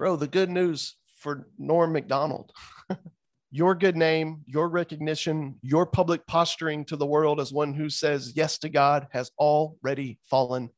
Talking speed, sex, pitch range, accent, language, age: 155 wpm, male, 140-180 Hz, American, English, 40-59